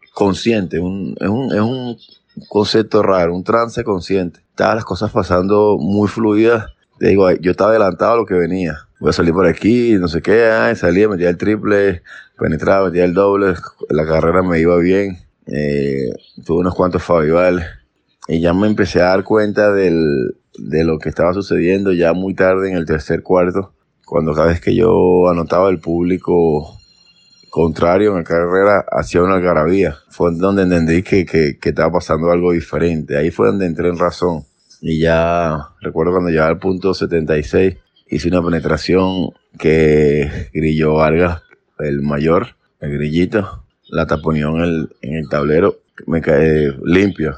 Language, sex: Spanish, male